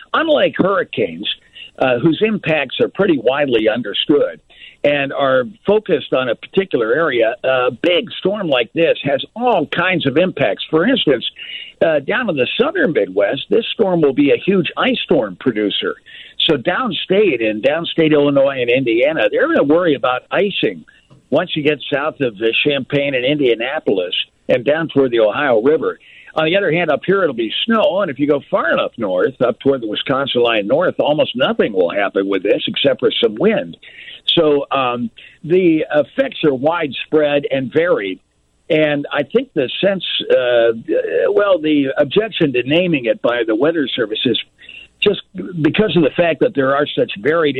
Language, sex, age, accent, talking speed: English, male, 60-79, American, 175 wpm